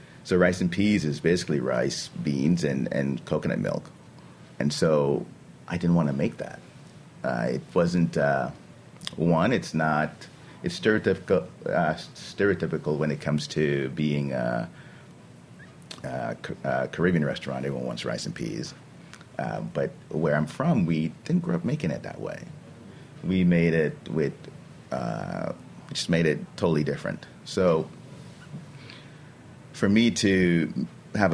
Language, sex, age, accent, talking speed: English, male, 30-49, American, 140 wpm